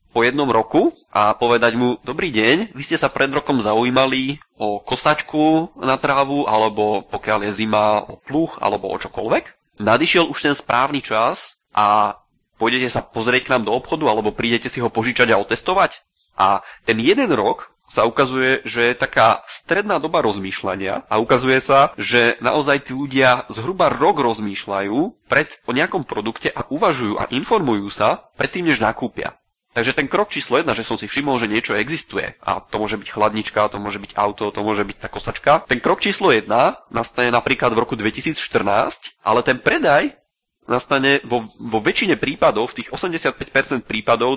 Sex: male